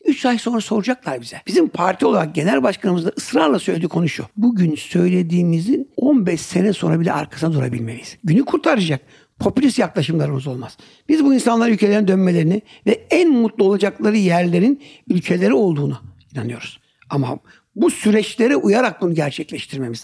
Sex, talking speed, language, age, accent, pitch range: male, 140 wpm, Turkish, 60-79, native, 145-225 Hz